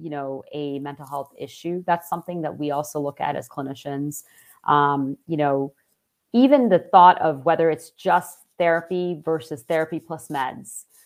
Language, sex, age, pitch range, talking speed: English, female, 40-59, 145-185 Hz, 165 wpm